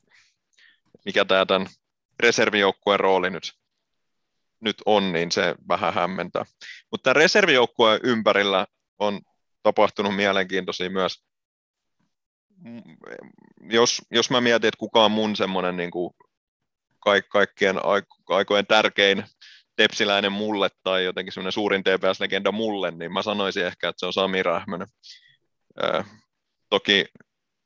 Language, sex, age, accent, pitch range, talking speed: Finnish, male, 30-49, native, 95-105 Hz, 105 wpm